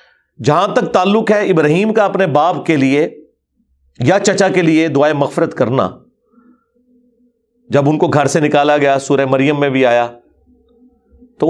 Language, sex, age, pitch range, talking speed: Urdu, male, 40-59, 140-200 Hz, 155 wpm